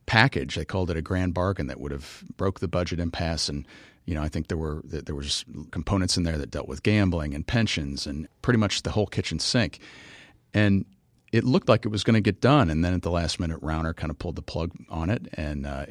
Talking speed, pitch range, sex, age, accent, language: 245 wpm, 80-105 Hz, male, 40-59, American, English